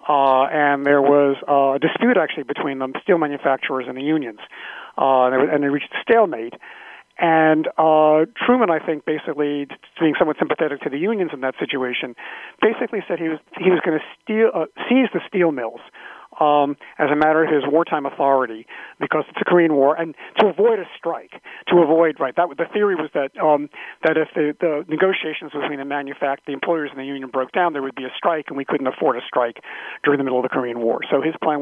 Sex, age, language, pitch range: male, 40-59, English, 140-170 Hz